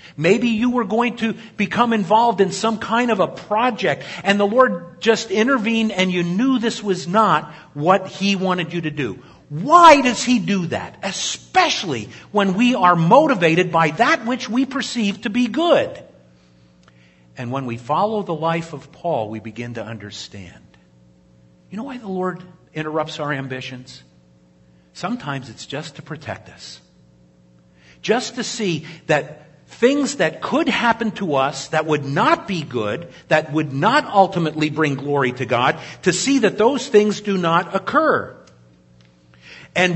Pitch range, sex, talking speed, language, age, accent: 135-215 Hz, male, 160 wpm, English, 50-69, American